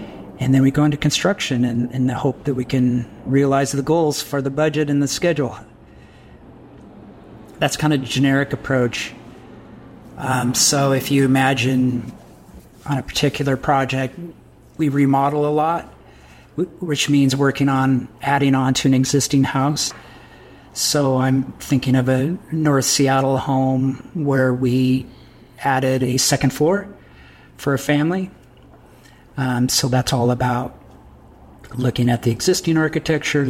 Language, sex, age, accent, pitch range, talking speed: French, male, 40-59, American, 125-140 Hz, 140 wpm